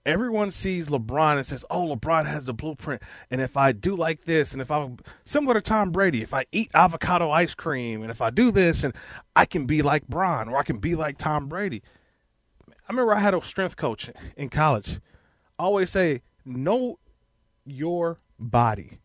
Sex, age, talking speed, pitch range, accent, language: male, 30-49, 195 wpm, 125-195 Hz, American, English